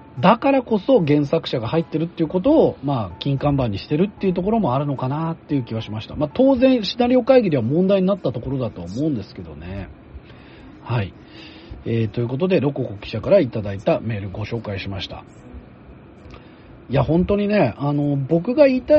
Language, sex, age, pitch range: Japanese, male, 40-59, 115-190 Hz